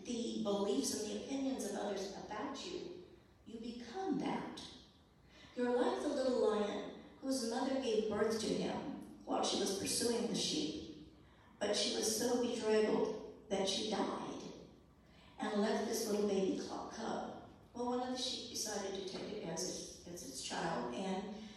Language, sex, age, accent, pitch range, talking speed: English, female, 60-79, American, 205-265 Hz, 165 wpm